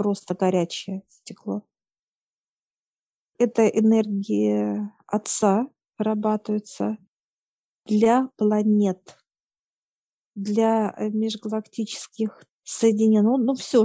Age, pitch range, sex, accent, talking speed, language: 50-69, 200-225 Hz, female, native, 65 wpm, Russian